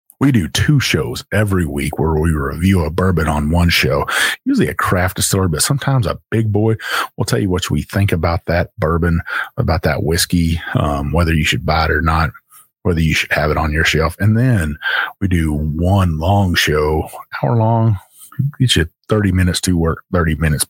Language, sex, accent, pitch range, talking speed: English, male, American, 80-105 Hz, 195 wpm